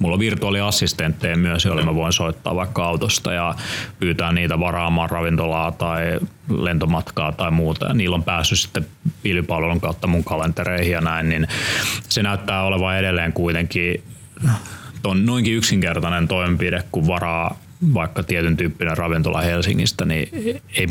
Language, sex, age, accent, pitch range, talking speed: Finnish, male, 30-49, native, 85-100 Hz, 140 wpm